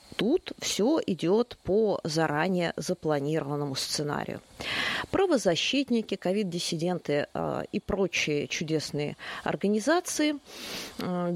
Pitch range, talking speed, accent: 155-230 Hz, 75 wpm, native